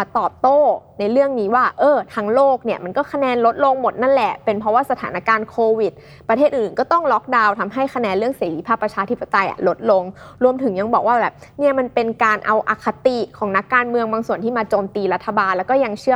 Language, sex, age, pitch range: Thai, female, 20-39, 205-260 Hz